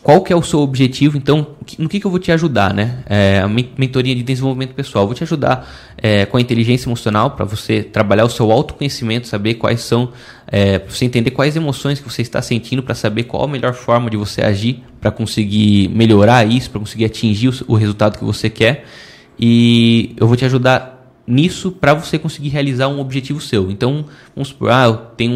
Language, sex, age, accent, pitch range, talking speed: Portuguese, male, 10-29, Brazilian, 110-135 Hz, 205 wpm